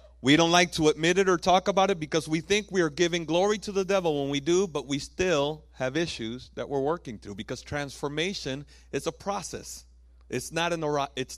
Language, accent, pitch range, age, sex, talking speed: English, American, 100-155 Hz, 40-59, male, 200 wpm